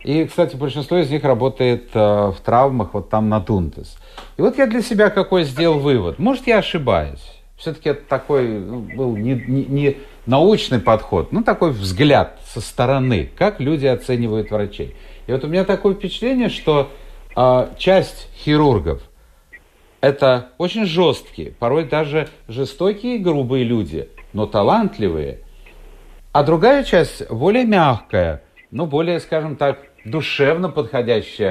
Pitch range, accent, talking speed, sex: 120-175 Hz, native, 140 wpm, male